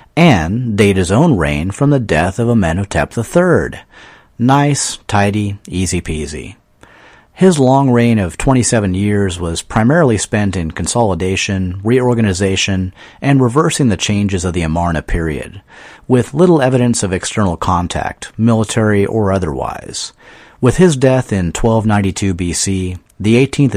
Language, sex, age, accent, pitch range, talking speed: English, male, 40-59, American, 95-125 Hz, 130 wpm